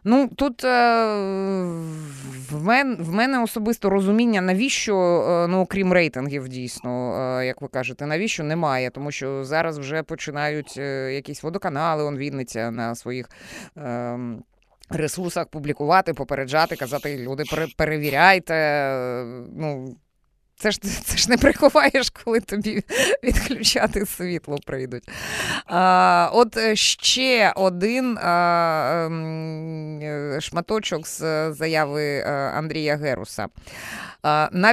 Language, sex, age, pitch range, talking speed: Ukrainian, female, 20-39, 145-210 Hz, 95 wpm